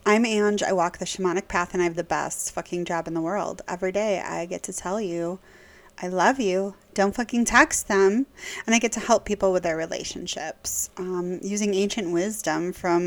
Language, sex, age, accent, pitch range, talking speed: English, female, 30-49, American, 180-215 Hz, 205 wpm